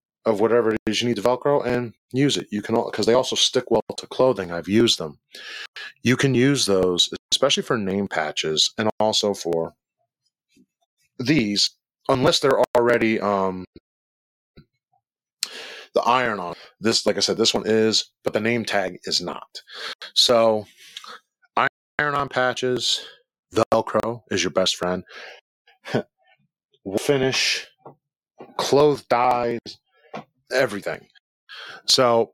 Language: English